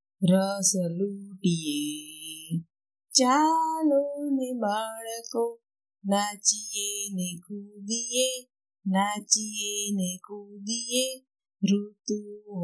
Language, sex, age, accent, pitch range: Gujarati, female, 30-49, native, 200-295 Hz